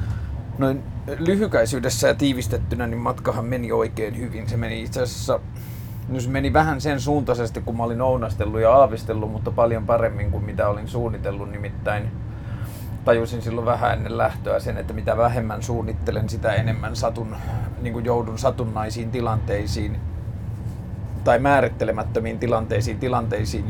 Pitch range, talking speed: 105-120 Hz, 135 wpm